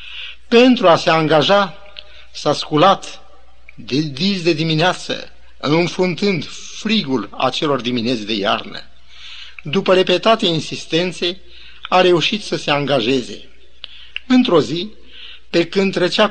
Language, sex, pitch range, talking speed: Romanian, male, 145-195 Hz, 105 wpm